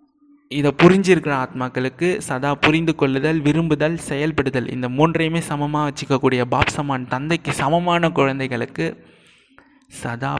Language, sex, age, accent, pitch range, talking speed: Tamil, male, 20-39, native, 125-155 Hz, 105 wpm